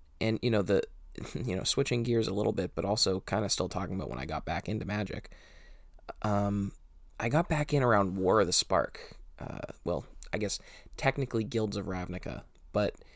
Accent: American